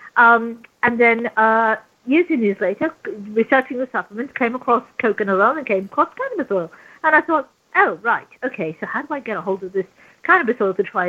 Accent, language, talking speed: British, English, 210 wpm